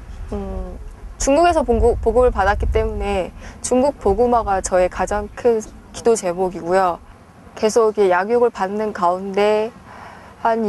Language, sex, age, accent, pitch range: Korean, female, 20-39, native, 180-255 Hz